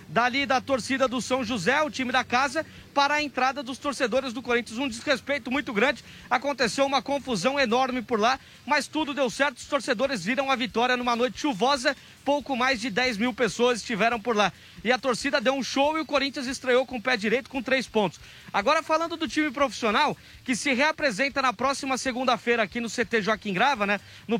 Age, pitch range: 20-39, 245-280 Hz